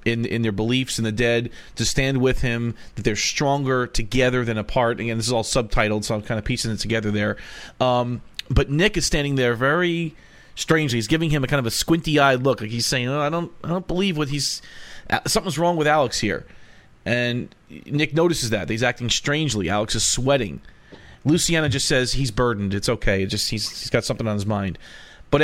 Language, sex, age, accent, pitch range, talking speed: English, male, 40-59, American, 115-145 Hz, 215 wpm